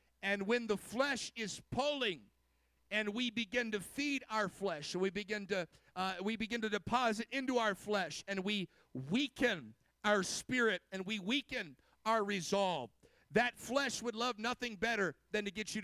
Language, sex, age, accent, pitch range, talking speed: English, male, 50-69, American, 200-245 Hz, 170 wpm